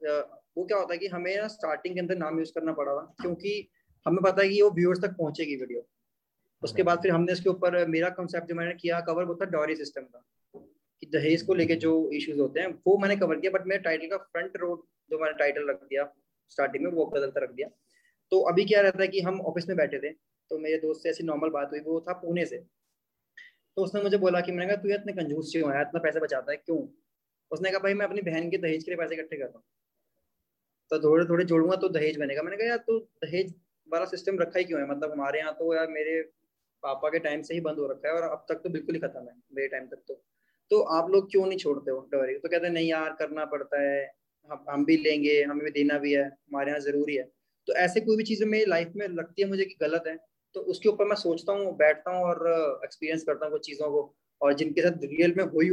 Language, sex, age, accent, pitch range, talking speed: Hindi, male, 20-39, native, 150-185 Hz, 230 wpm